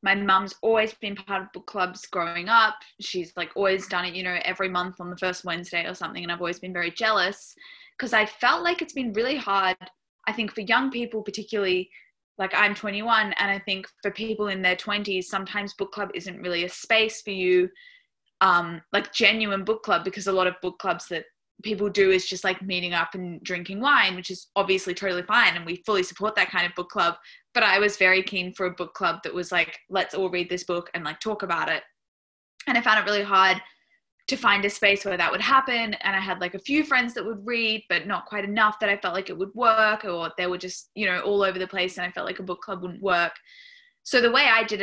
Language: English